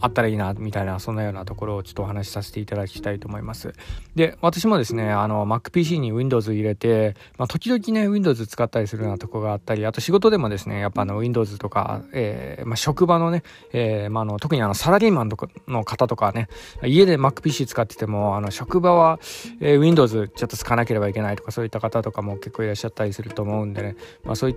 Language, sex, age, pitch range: Japanese, male, 20-39, 105-145 Hz